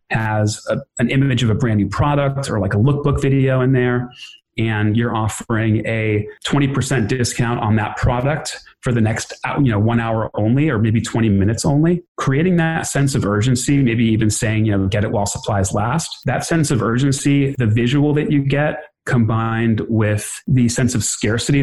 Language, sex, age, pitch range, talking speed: English, male, 30-49, 110-135 Hz, 180 wpm